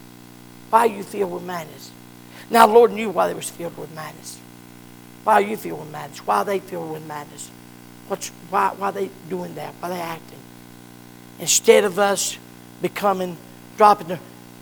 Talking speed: 180 wpm